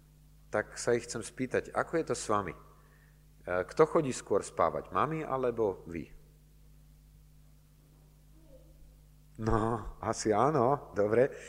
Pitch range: 135-155 Hz